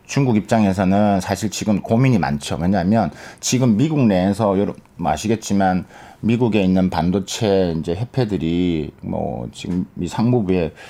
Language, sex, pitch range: Korean, male, 95-130 Hz